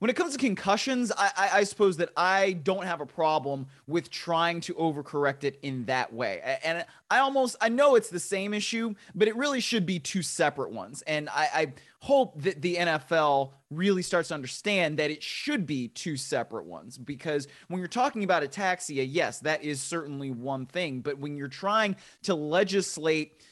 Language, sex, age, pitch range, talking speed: English, male, 30-49, 150-195 Hz, 195 wpm